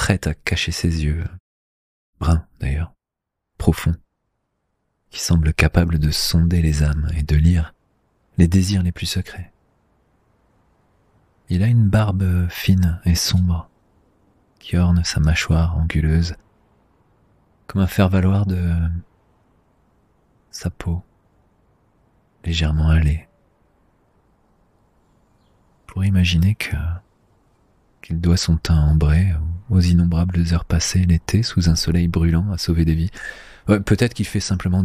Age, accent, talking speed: 40-59, French, 115 wpm